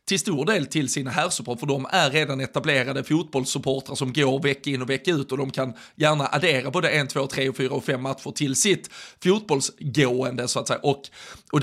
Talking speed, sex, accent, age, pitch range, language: 210 wpm, male, native, 30-49, 135-155 Hz, Swedish